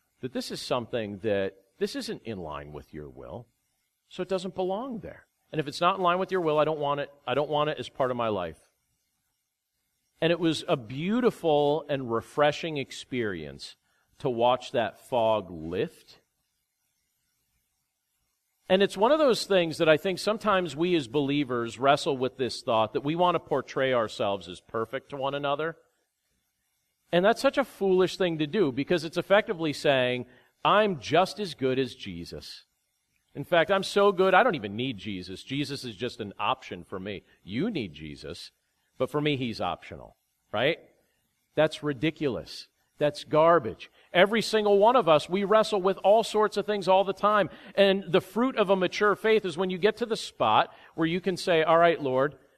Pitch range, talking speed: 130-190 Hz, 185 wpm